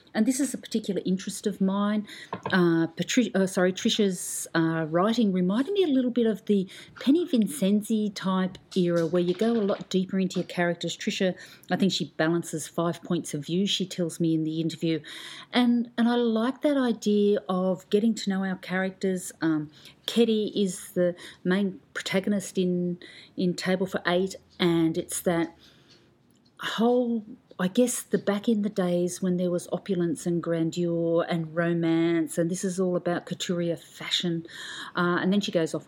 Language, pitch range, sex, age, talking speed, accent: English, 170-215 Hz, female, 40-59, 175 wpm, Australian